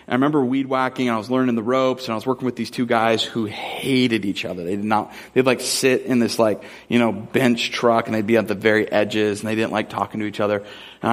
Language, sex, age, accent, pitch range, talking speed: English, male, 30-49, American, 120-160 Hz, 275 wpm